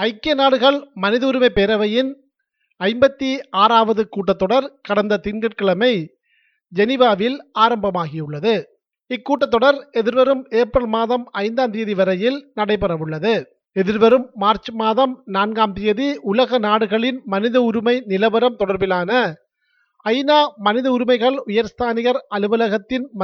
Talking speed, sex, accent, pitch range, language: 90 wpm, male, native, 210-260 Hz, Tamil